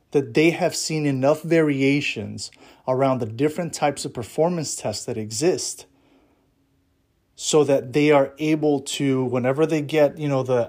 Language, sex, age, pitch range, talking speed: English, male, 30-49, 130-155 Hz, 150 wpm